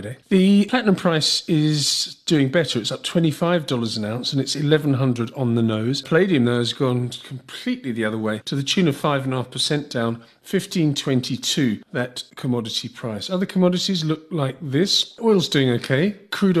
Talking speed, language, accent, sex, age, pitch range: 185 wpm, English, British, male, 40-59, 125-155 Hz